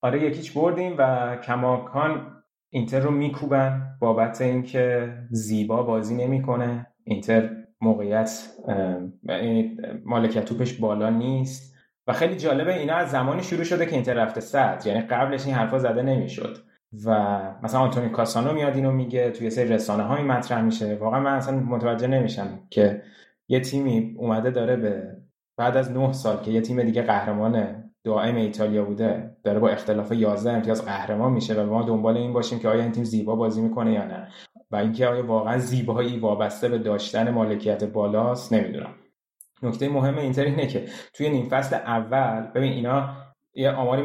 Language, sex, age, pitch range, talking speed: Persian, male, 20-39, 110-135 Hz, 160 wpm